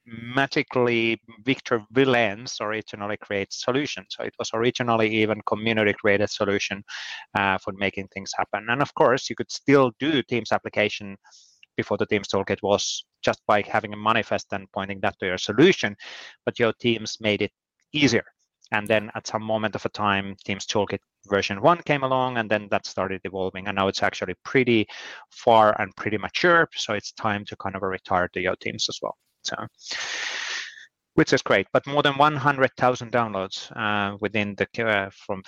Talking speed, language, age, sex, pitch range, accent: 175 wpm, English, 30-49, male, 100-125 Hz, Finnish